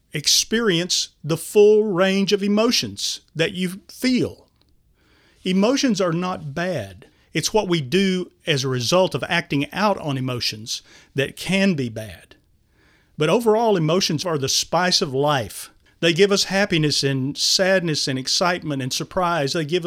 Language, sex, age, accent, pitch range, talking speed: English, male, 40-59, American, 135-185 Hz, 150 wpm